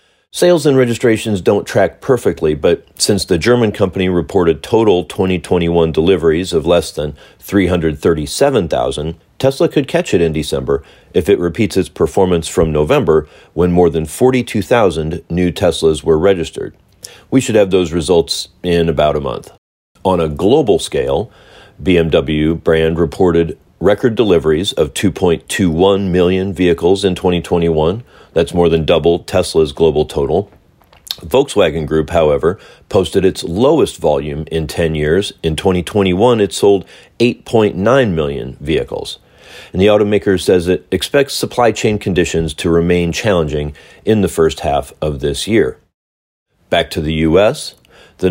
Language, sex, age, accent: English, male, 40-59, American